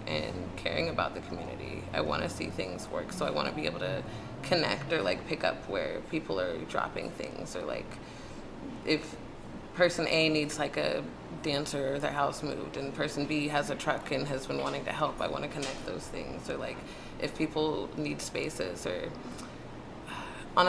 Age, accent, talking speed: 20-39, American, 195 wpm